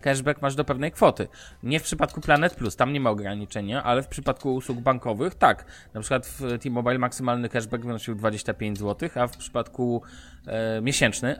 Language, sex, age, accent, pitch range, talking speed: Polish, male, 20-39, native, 110-145 Hz, 180 wpm